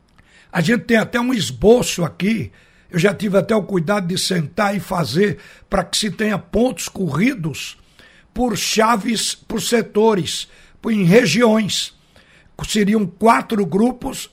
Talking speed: 135 wpm